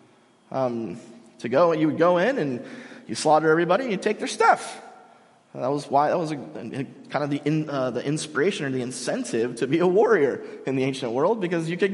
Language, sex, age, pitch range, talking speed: English, male, 20-39, 125-175 Hz, 200 wpm